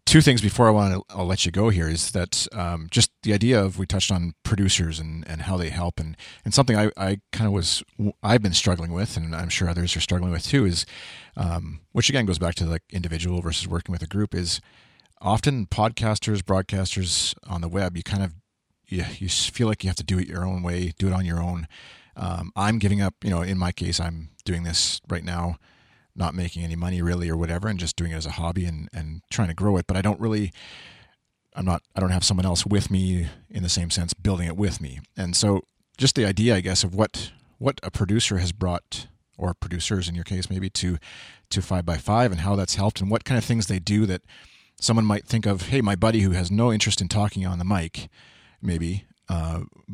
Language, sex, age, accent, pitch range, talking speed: English, male, 30-49, American, 85-105 Hz, 240 wpm